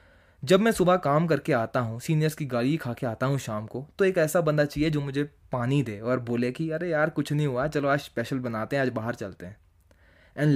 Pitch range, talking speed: 110-150 Hz, 245 wpm